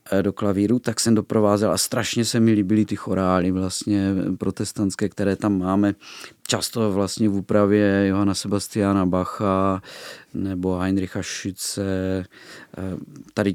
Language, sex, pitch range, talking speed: Czech, male, 100-125 Hz, 125 wpm